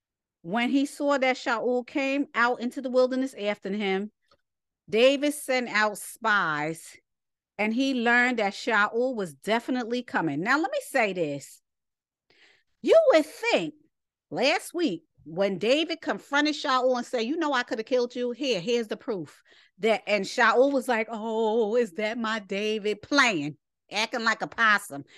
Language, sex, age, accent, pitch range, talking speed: English, female, 40-59, American, 195-255 Hz, 155 wpm